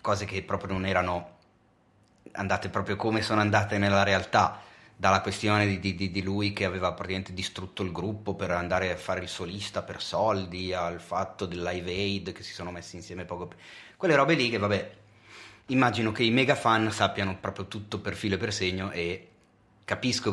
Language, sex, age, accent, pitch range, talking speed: Italian, male, 30-49, native, 90-105 Hz, 185 wpm